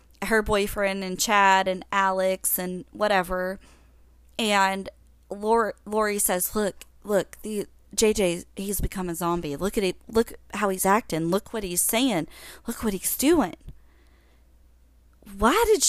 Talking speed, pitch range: 140 wpm, 180-230 Hz